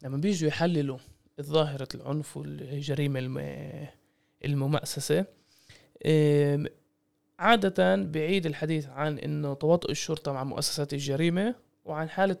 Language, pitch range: Arabic, 140-170 Hz